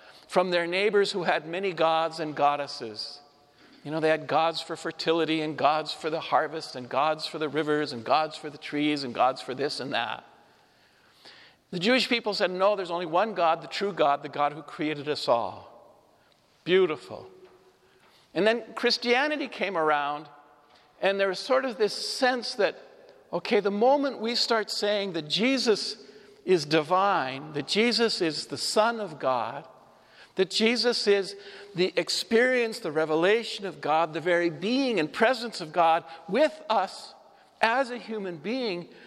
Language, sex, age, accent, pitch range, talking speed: English, male, 50-69, American, 160-235 Hz, 165 wpm